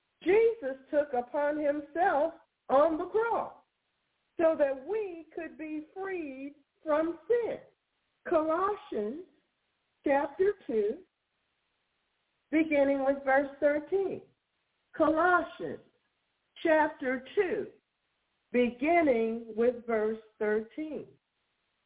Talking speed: 80 wpm